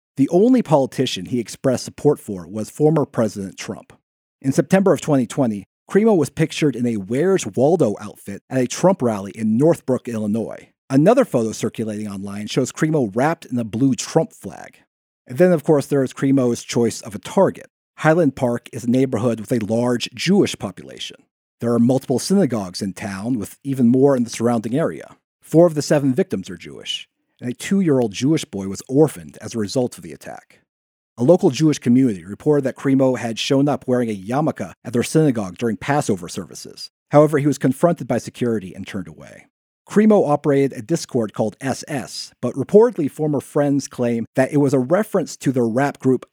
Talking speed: 185 wpm